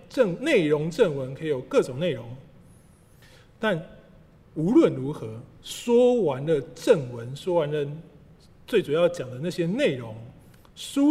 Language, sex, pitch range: Chinese, male, 140-190 Hz